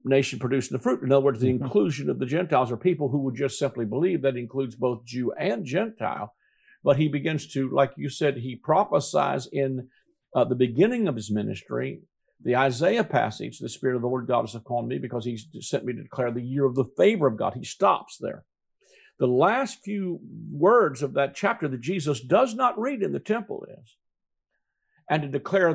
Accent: American